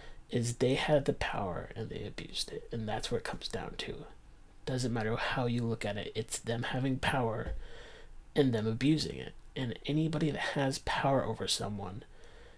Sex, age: male, 30-49